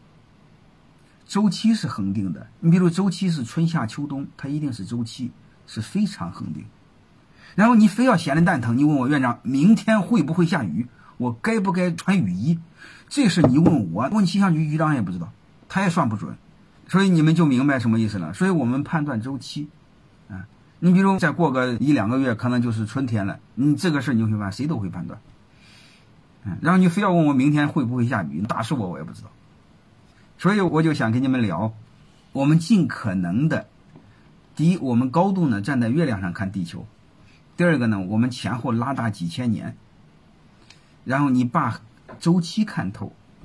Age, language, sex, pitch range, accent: 50-69, Chinese, male, 115-170 Hz, native